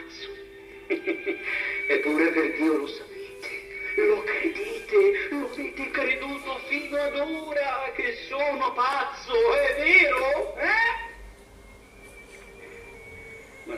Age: 50-69